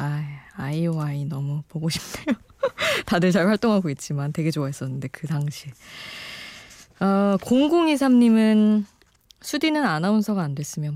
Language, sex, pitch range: Korean, female, 155-215 Hz